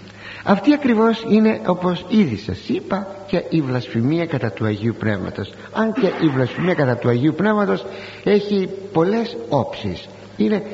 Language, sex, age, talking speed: Greek, male, 60-79, 145 wpm